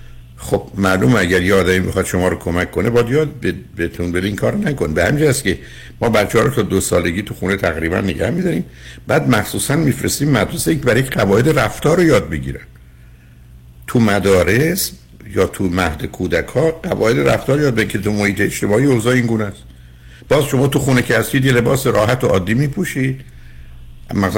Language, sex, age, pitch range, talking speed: Persian, male, 60-79, 85-120 Hz, 175 wpm